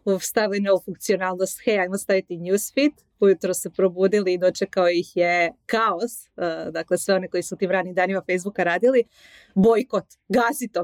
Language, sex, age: Croatian, female, 30-49